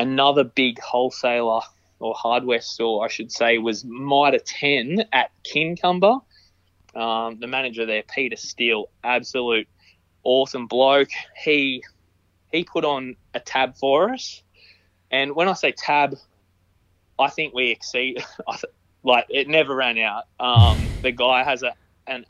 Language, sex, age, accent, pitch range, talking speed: English, male, 20-39, Australian, 90-130 Hz, 135 wpm